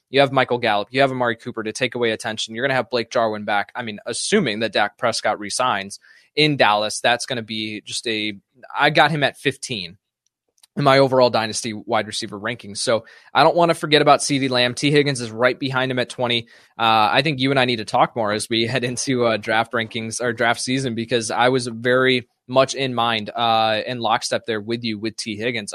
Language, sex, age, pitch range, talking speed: English, male, 20-39, 110-130 Hz, 230 wpm